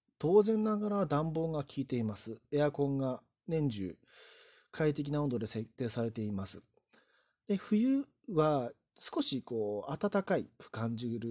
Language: Japanese